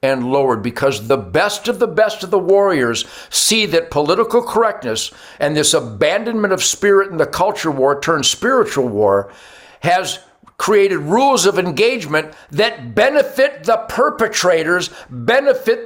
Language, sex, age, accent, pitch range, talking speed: English, male, 60-79, American, 175-250 Hz, 140 wpm